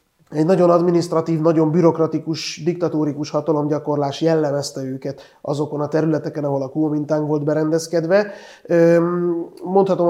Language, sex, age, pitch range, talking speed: Hungarian, male, 30-49, 145-170 Hz, 105 wpm